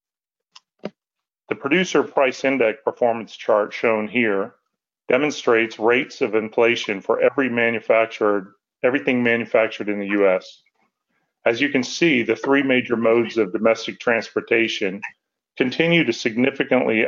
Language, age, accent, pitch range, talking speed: English, 40-59, American, 110-130 Hz, 120 wpm